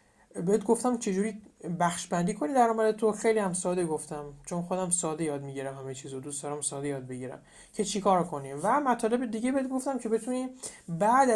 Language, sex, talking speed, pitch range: Persian, male, 185 wpm, 155-220 Hz